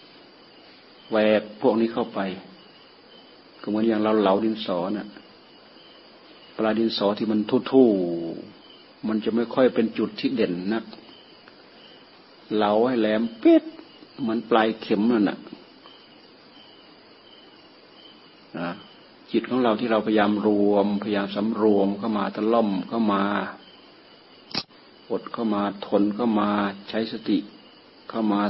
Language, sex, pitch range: Thai, male, 105-125 Hz